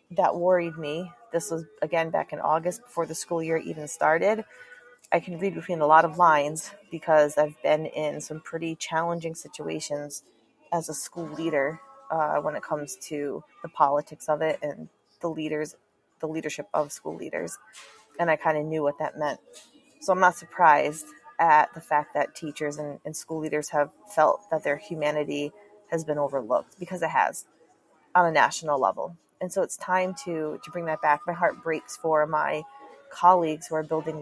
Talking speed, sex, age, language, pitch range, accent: 185 wpm, female, 30-49, English, 155-190 Hz, American